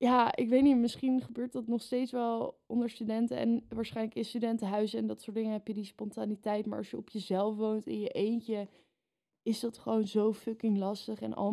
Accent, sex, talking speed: Dutch, female, 215 wpm